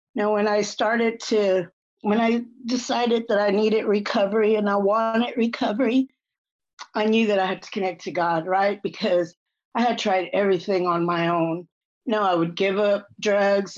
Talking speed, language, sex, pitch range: 185 wpm, English, female, 185-215 Hz